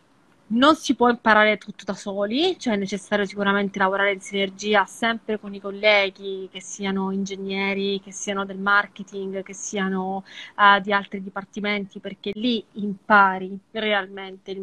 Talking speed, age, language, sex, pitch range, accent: 145 wpm, 20-39, Italian, female, 195-220 Hz, native